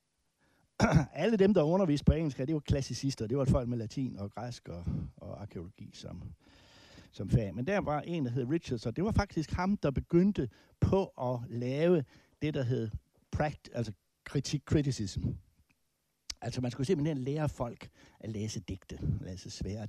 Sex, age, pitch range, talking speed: male, 60-79, 105-145 Hz, 170 wpm